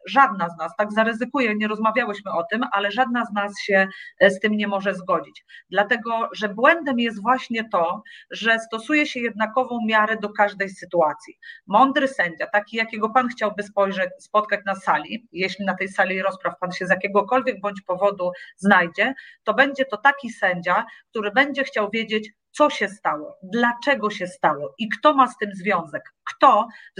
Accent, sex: native, female